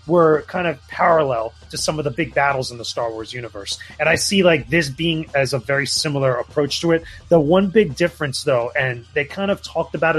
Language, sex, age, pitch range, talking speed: English, male, 30-49, 135-165 Hz, 230 wpm